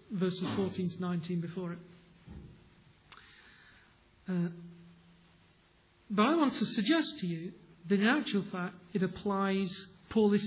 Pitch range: 180-235 Hz